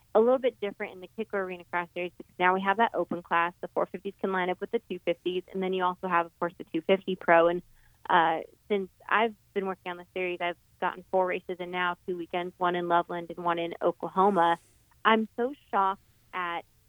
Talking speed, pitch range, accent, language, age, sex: 225 wpm, 175-195 Hz, American, English, 20-39, female